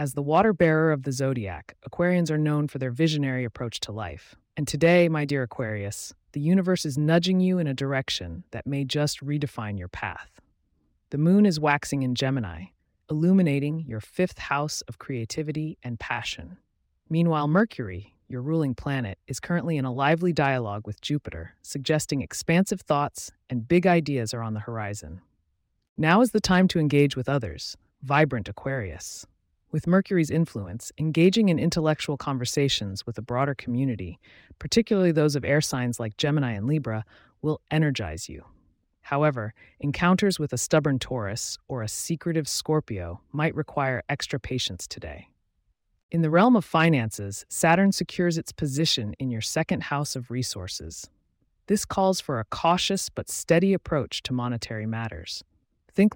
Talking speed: 155 wpm